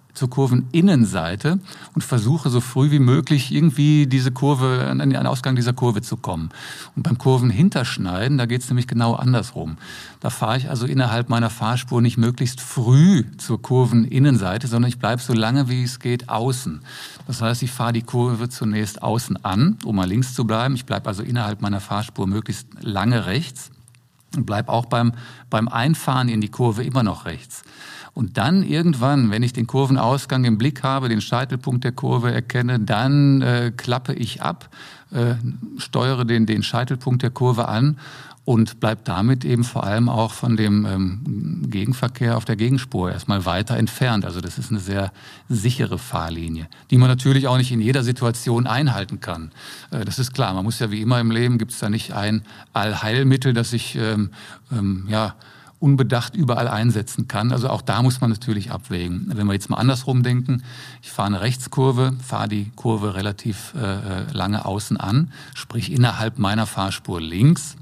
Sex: male